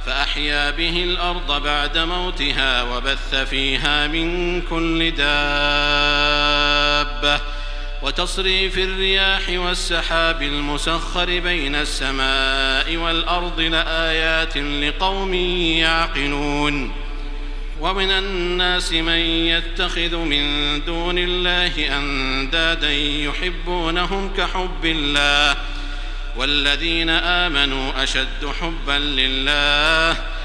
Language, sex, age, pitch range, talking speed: Arabic, male, 50-69, 145-175 Hz, 70 wpm